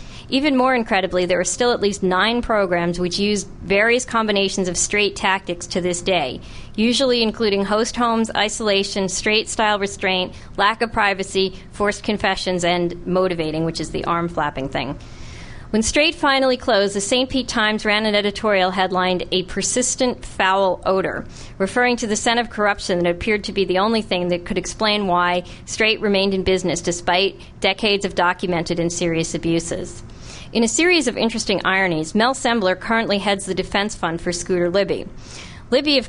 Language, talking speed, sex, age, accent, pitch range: English, 170 wpm, female, 40-59, American, 180-215 Hz